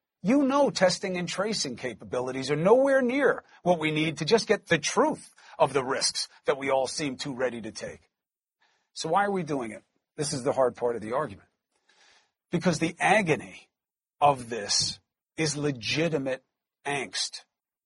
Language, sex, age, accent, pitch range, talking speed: English, male, 40-59, American, 145-210 Hz, 170 wpm